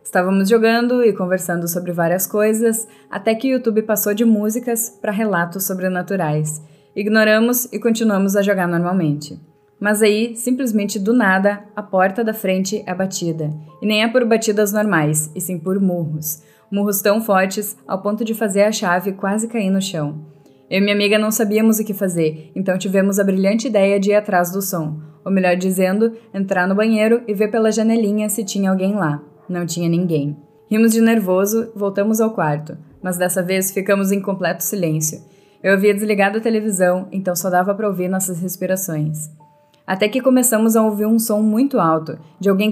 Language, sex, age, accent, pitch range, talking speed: Portuguese, female, 10-29, Brazilian, 175-215 Hz, 180 wpm